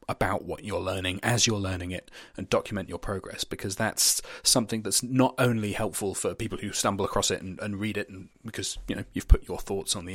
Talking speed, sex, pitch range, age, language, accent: 225 wpm, male, 95-120 Hz, 30-49, English, British